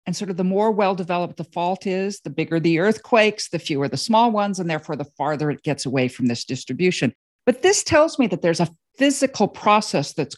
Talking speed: 220 wpm